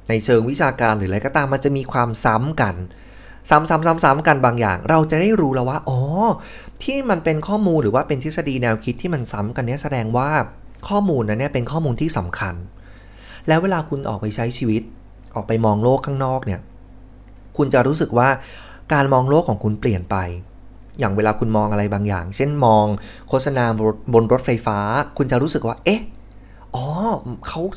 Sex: male